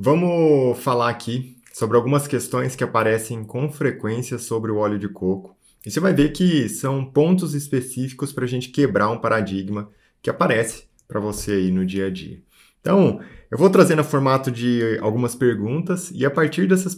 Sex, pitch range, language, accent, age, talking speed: male, 105-135 Hz, Portuguese, Brazilian, 20-39, 180 wpm